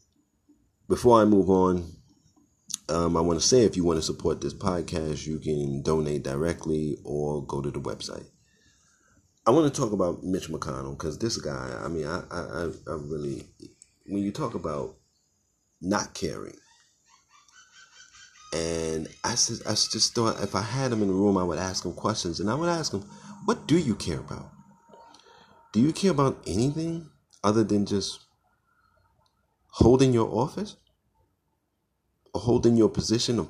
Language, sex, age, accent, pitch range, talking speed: English, male, 30-49, American, 80-120 Hz, 160 wpm